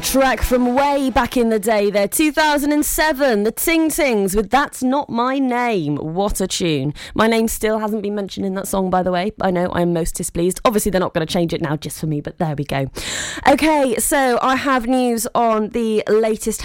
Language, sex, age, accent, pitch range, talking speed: English, female, 20-39, British, 195-260 Hz, 215 wpm